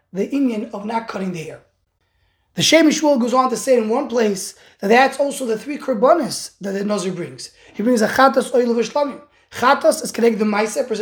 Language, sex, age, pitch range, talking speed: English, male, 20-39, 220-275 Hz, 220 wpm